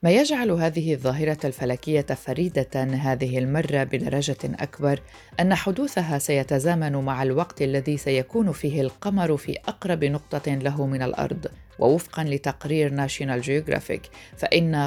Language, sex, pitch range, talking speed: Arabic, female, 135-160 Hz, 120 wpm